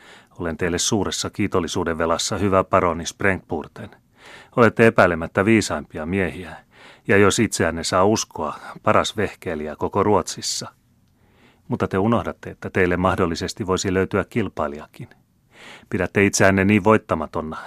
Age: 30-49